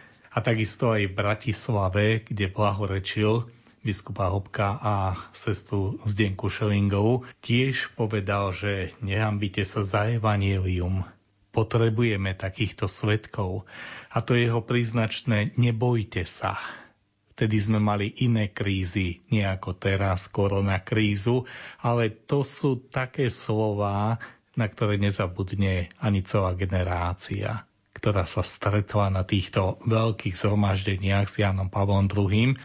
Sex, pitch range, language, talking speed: male, 100-120 Hz, Slovak, 115 wpm